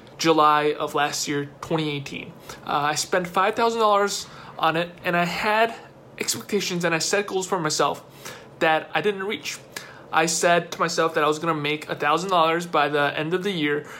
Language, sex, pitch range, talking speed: English, male, 150-195 Hz, 190 wpm